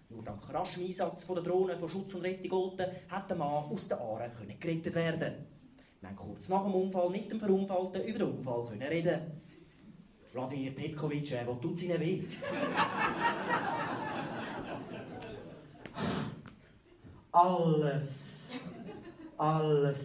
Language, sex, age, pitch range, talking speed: German, male, 30-49, 135-175 Hz, 130 wpm